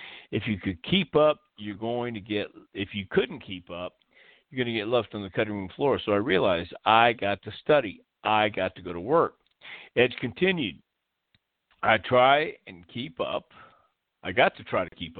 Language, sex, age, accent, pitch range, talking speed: English, male, 50-69, American, 90-110 Hz, 195 wpm